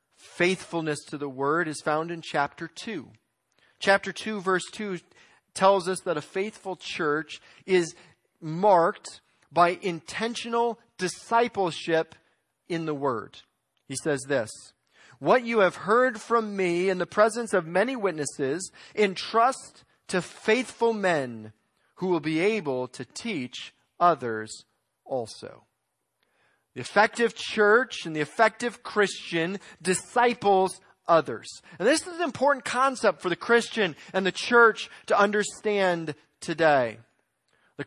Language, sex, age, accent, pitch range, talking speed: English, male, 40-59, American, 160-225 Hz, 125 wpm